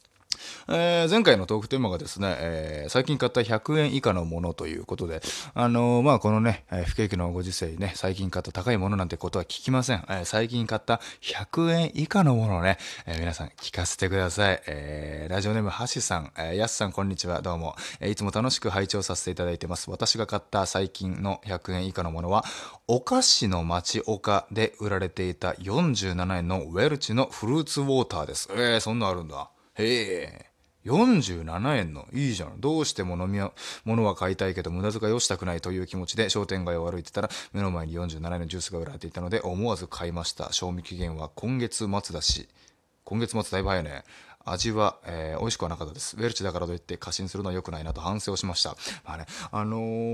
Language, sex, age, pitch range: Japanese, male, 20-39, 90-115 Hz